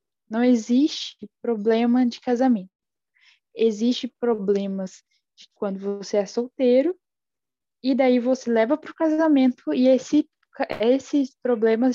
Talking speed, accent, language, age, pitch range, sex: 115 wpm, Brazilian, Portuguese, 10-29, 205-265 Hz, female